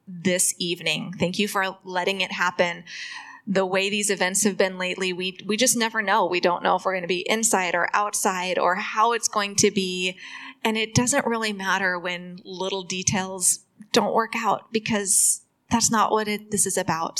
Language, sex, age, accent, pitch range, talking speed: English, female, 20-39, American, 185-210 Hz, 195 wpm